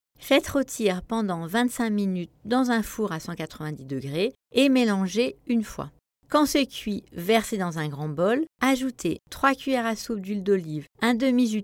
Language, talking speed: French, 165 wpm